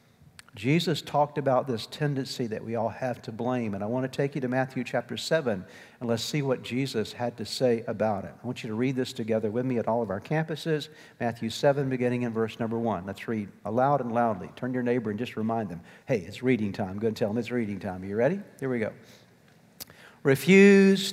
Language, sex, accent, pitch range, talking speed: English, male, American, 120-150 Hz, 235 wpm